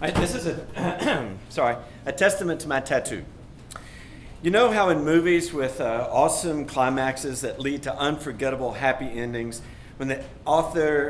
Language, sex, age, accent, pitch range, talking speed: English, male, 40-59, American, 125-155 Hz, 150 wpm